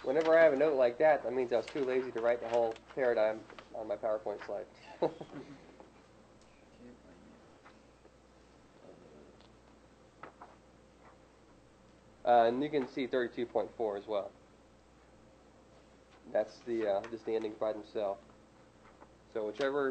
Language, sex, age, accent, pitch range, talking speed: English, male, 20-39, American, 110-135 Hz, 120 wpm